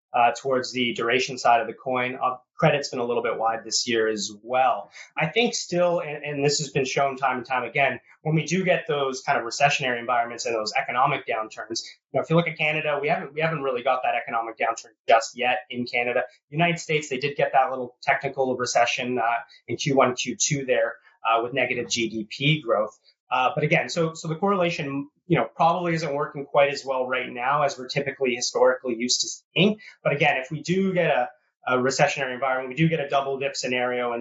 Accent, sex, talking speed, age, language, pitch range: American, male, 225 wpm, 30-49, English, 120-150 Hz